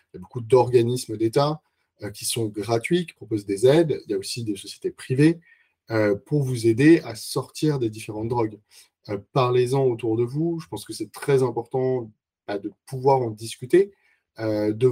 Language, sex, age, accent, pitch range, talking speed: French, male, 20-39, French, 115-155 Hz, 175 wpm